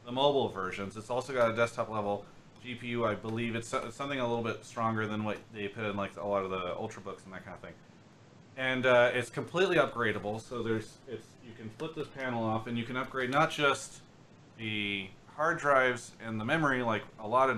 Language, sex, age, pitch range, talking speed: English, male, 30-49, 105-125 Hz, 220 wpm